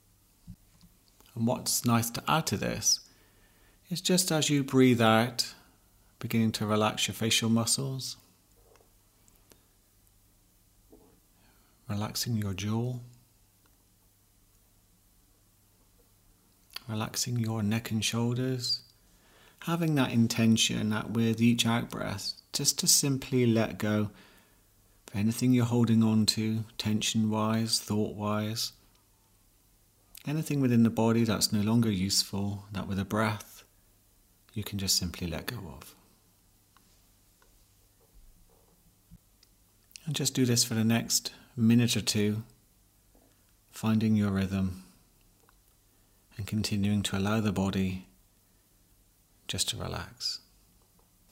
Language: English